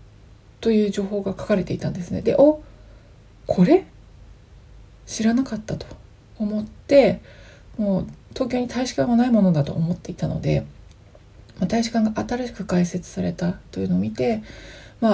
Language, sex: Japanese, female